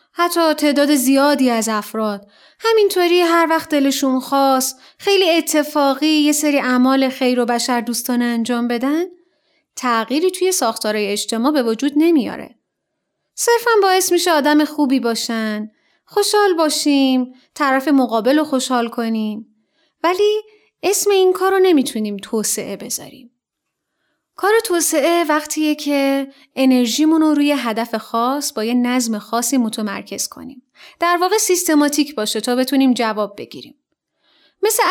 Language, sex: Persian, female